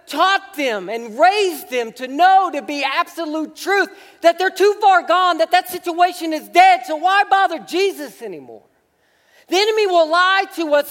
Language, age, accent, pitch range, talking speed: English, 50-69, American, 295-365 Hz, 175 wpm